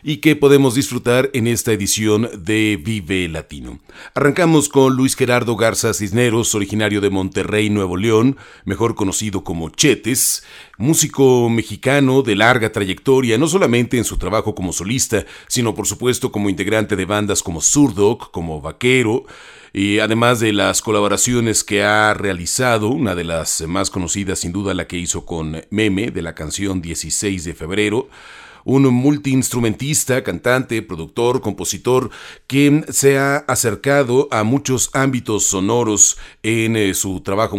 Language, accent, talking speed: Spanish, Mexican, 145 wpm